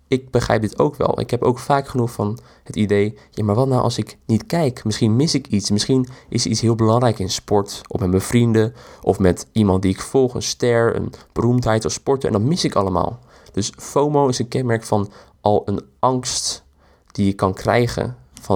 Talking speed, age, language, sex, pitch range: 215 wpm, 20-39, Dutch, male, 100-130 Hz